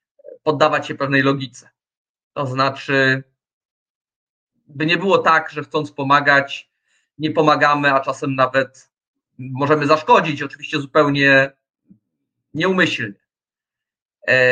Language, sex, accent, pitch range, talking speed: Polish, male, native, 135-160 Hz, 95 wpm